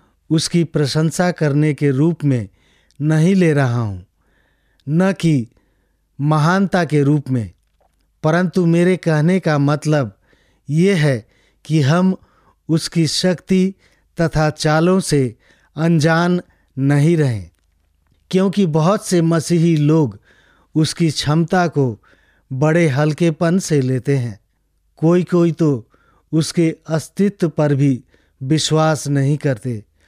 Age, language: 50-69, English